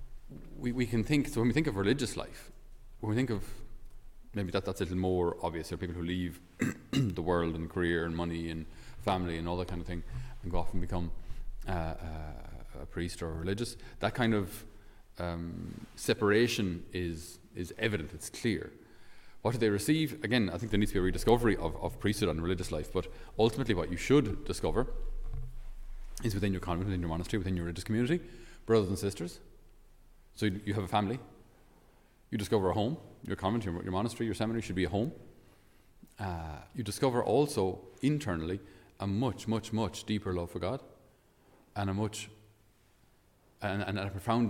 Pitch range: 90-115 Hz